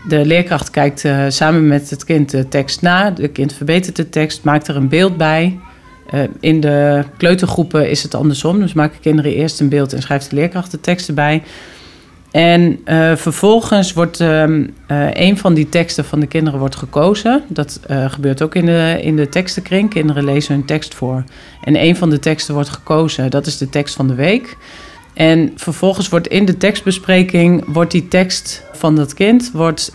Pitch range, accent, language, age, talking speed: 145-170 Hz, Dutch, Dutch, 40-59, 195 wpm